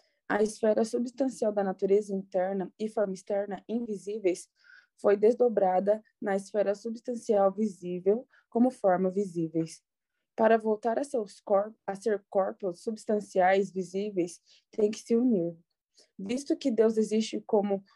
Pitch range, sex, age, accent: 195-230 Hz, female, 20-39, Brazilian